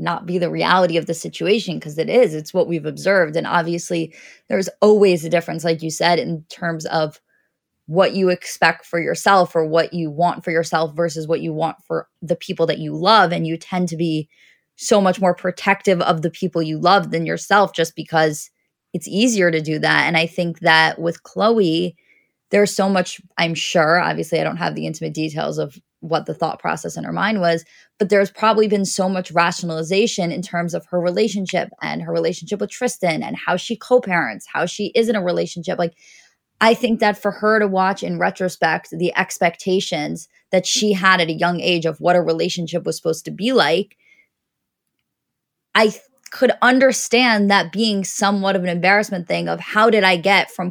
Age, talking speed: 20-39, 200 wpm